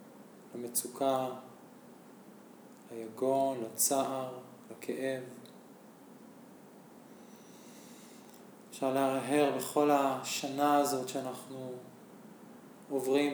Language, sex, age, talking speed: Hebrew, male, 20-39, 50 wpm